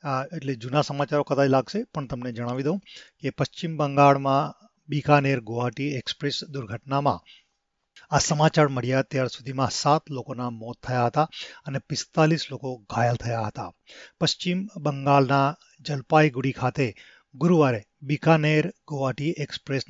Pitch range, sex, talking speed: 130-150 Hz, male, 125 wpm